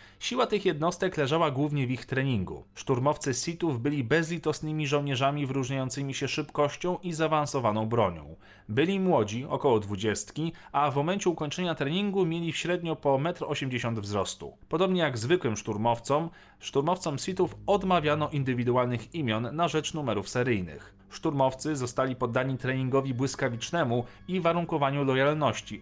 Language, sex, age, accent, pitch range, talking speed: Polish, male, 40-59, native, 120-165 Hz, 130 wpm